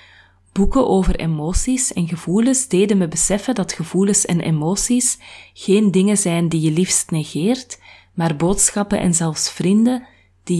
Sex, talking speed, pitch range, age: female, 140 wpm, 160-200 Hz, 30-49